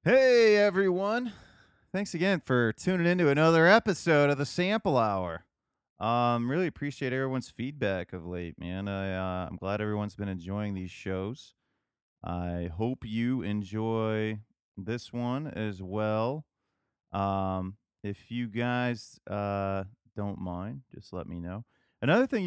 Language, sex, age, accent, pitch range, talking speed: English, male, 30-49, American, 95-130 Hz, 135 wpm